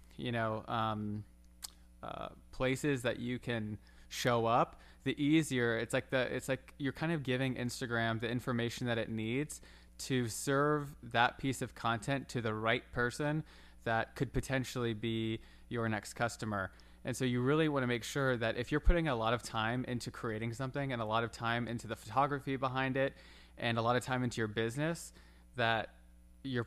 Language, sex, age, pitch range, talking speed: English, male, 20-39, 110-130 Hz, 185 wpm